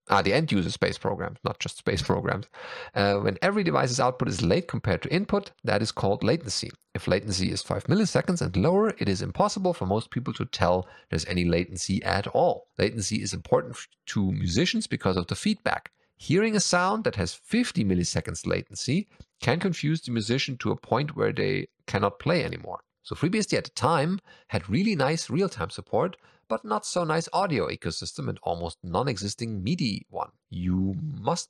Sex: male